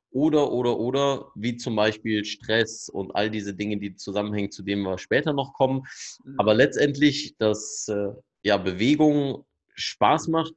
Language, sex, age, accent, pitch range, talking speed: German, male, 30-49, German, 100-125 Hz, 150 wpm